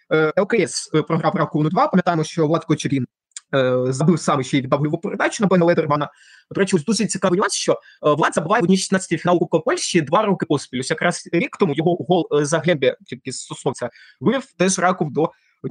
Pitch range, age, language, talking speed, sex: 150-190 Hz, 20-39, Ukrainian, 180 wpm, male